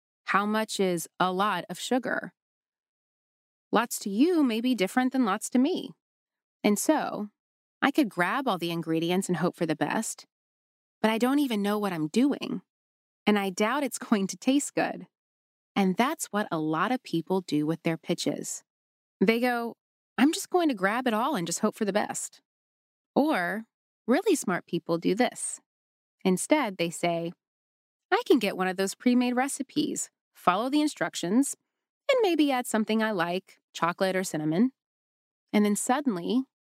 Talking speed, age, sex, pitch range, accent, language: 170 wpm, 20-39, female, 180-260 Hz, American, English